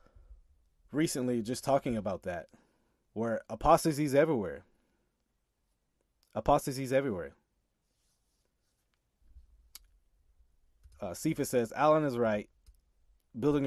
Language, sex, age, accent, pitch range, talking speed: English, male, 30-49, American, 105-160 Hz, 85 wpm